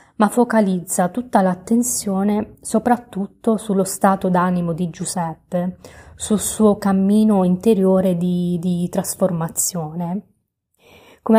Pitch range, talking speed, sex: 180-215 Hz, 95 wpm, female